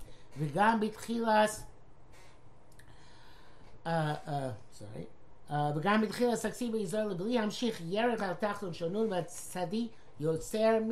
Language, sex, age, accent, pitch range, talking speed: English, male, 60-79, American, 160-220 Hz, 70 wpm